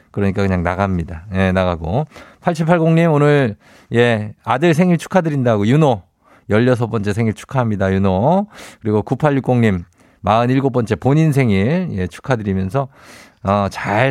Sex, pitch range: male, 100-155 Hz